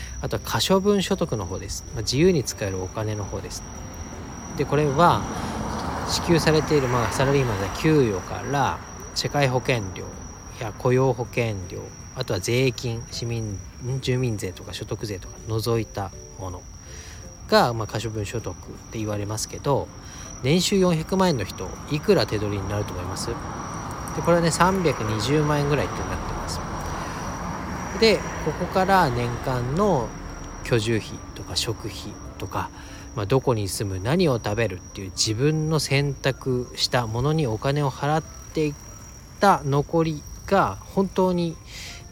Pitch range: 95-145 Hz